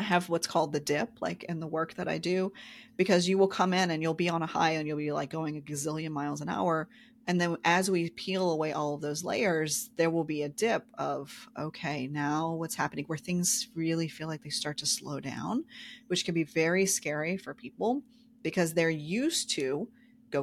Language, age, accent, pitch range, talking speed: English, 30-49, American, 150-195 Hz, 220 wpm